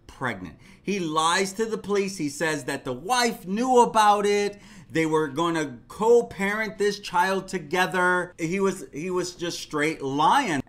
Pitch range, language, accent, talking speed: 155-225 Hz, English, American, 165 wpm